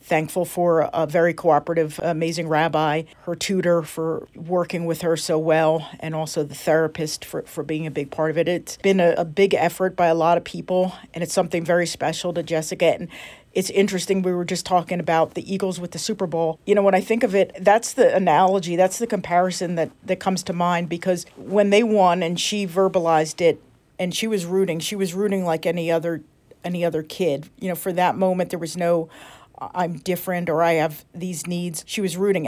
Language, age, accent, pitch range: English, 50-69, American, 165-190 Hz